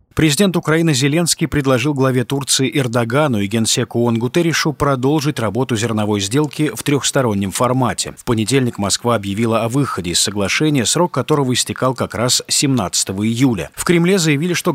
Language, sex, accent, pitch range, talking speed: Russian, male, native, 115-150 Hz, 150 wpm